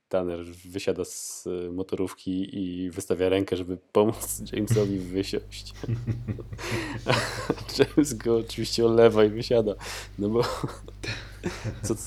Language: Polish